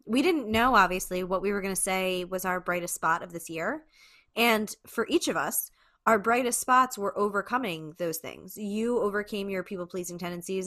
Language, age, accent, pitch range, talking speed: English, 20-39, American, 175-215 Hz, 190 wpm